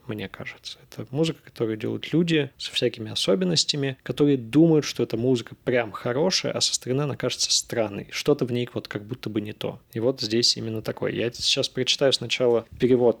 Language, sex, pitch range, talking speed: Russian, male, 120-150 Hz, 190 wpm